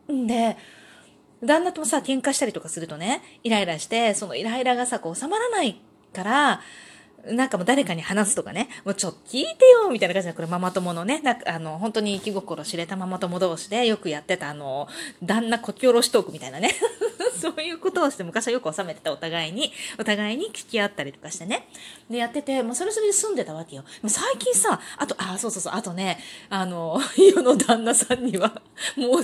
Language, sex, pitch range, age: Japanese, female, 195-310 Hz, 20-39